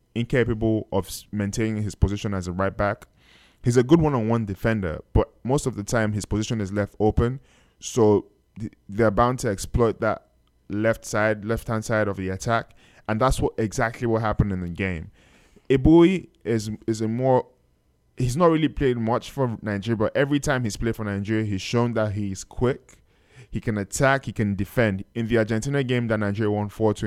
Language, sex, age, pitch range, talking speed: English, male, 10-29, 100-120 Hz, 190 wpm